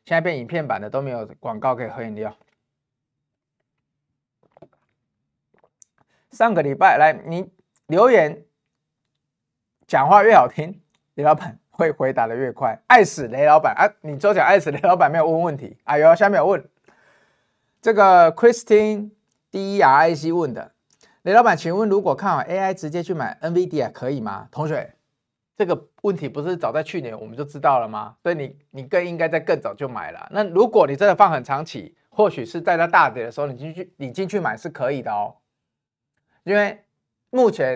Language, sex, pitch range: Chinese, male, 135-185 Hz